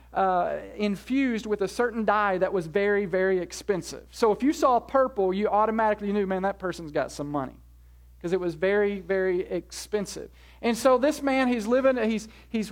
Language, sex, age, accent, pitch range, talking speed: English, male, 40-59, American, 185-230 Hz, 175 wpm